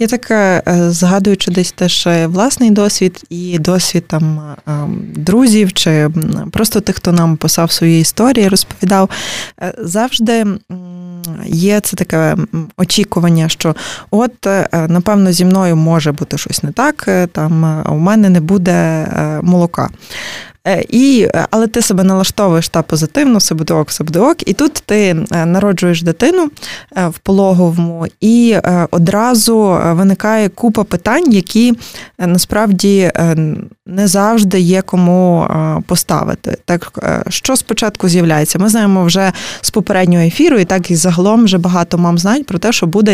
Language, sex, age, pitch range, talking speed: Ukrainian, female, 20-39, 170-210 Hz, 125 wpm